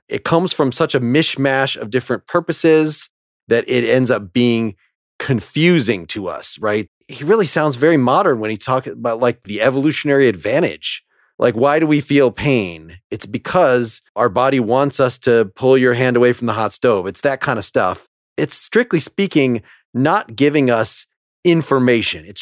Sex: male